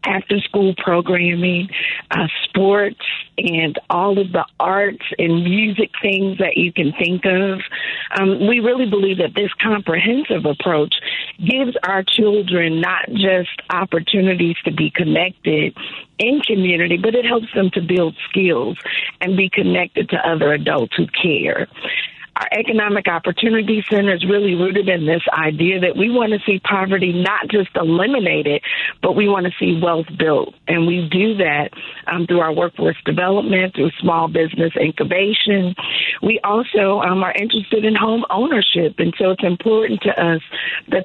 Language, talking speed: English, 155 wpm